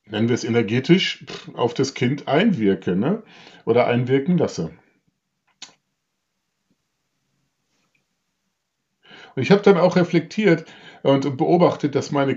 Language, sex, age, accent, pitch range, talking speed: German, male, 50-69, German, 110-165 Hz, 105 wpm